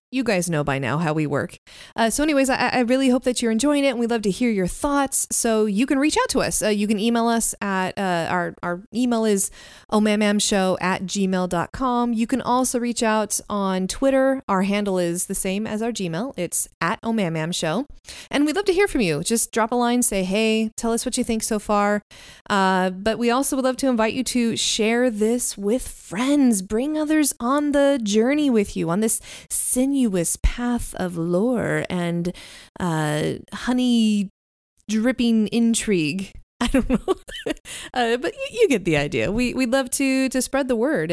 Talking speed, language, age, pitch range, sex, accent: 195 wpm, English, 20-39, 190-250 Hz, female, American